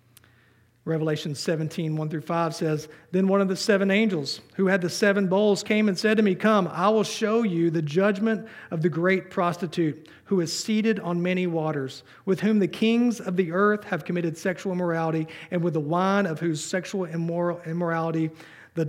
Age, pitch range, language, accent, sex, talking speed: 40-59, 160-190 Hz, English, American, male, 190 wpm